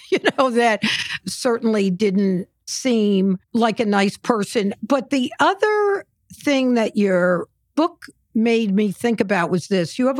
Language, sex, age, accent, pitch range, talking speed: English, female, 60-79, American, 175-230 Hz, 145 wpm